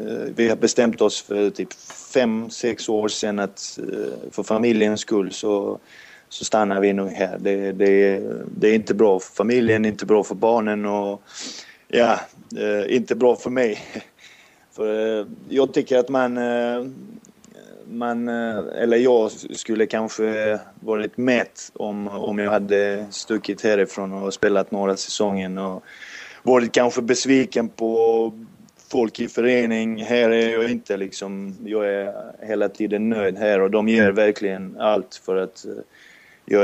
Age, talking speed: 20-39, 140 wpm